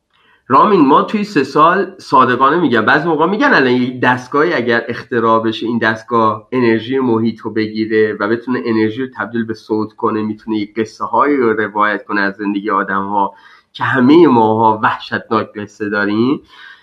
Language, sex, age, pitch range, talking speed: Persian, male, 30-49, 110-160 Hz, 170 wpm